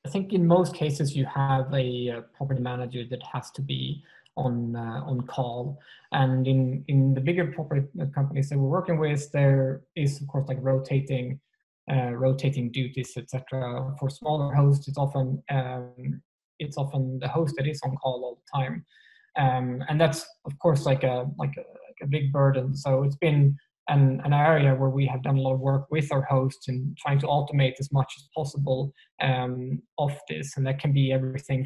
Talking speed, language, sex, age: 195 wpm, English, male, 20-39